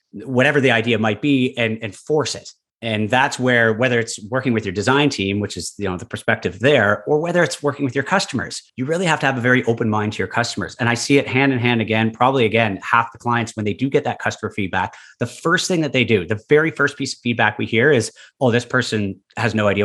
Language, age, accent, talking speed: English, 30-49, American, 260 wpm